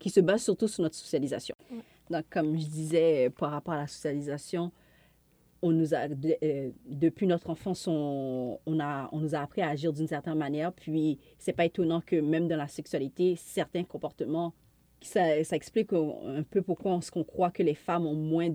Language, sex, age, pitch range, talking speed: French, female, 40-59, 150-170 Hz, 195 wpm